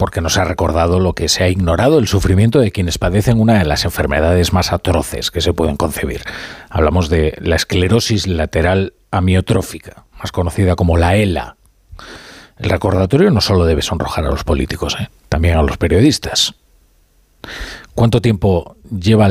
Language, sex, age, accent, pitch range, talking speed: Spanish, male, 40-59, Spanish, 85-120 Hz, 160 wpm